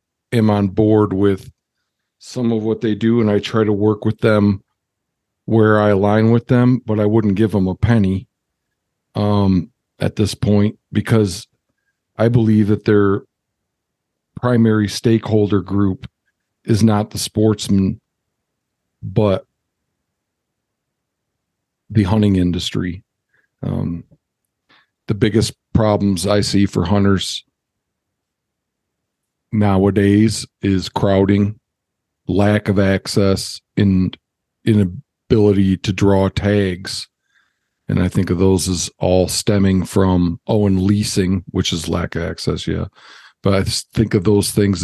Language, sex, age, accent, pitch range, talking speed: English, male, 50-69, American, 95-110 Hz, 120 wpm